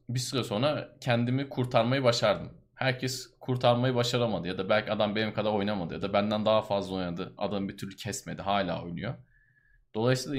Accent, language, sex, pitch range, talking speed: native, Turkish, male, 105-125 Hz, 170 wpm